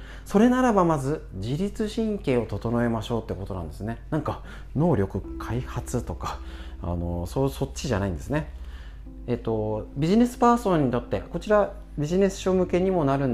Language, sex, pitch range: Japanese, male, 105-170 Hz